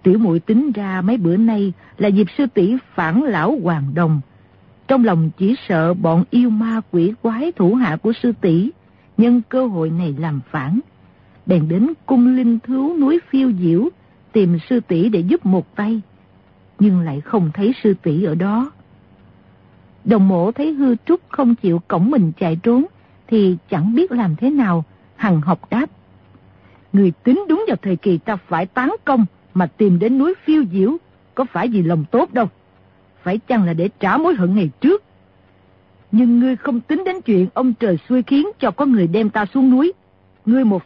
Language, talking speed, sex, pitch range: Vietnamese, 190 wpm, female, 170-250 Hz